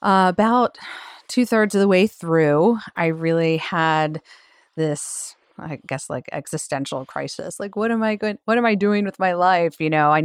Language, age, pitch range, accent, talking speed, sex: English, 30-49, 155-180 Hz, American, 180 wpm, female